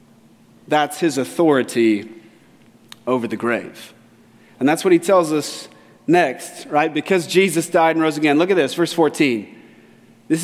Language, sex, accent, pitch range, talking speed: English, male, American, 165-225 Hz, 150 wpm